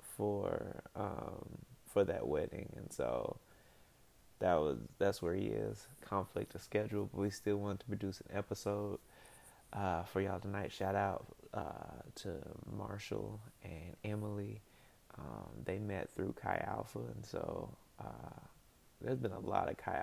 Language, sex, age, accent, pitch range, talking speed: English, male, 20-39, American, 100-115 Hz, 150 wpm